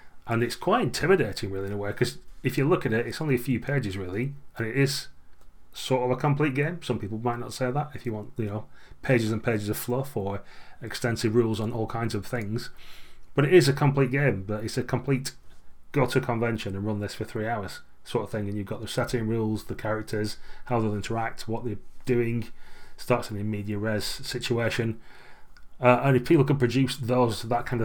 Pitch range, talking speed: 105-125 Hz, 220 wpm